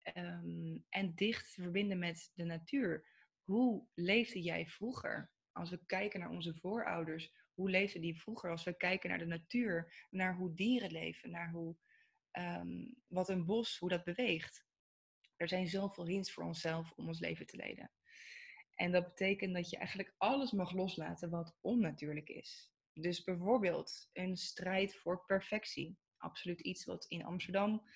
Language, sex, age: Dutch, female, 20-39